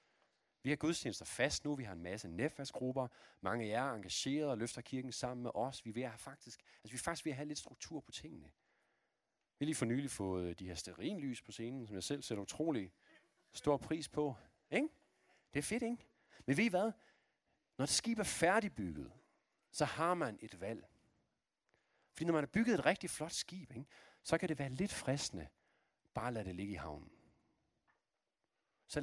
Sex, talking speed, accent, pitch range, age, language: male, 205 wpm, native, 120-190 Hz, 40-59, Danish